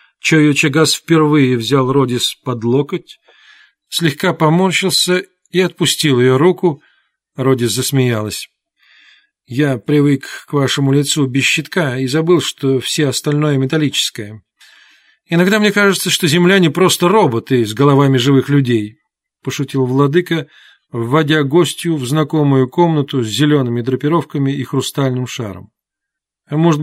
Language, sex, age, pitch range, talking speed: Russian, male, 40-59, 130-165 Hz, 115 wpm